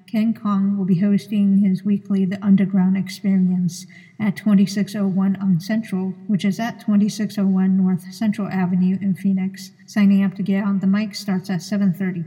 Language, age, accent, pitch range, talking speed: English, 50-69, American, 190-205 Hz, 160 wpm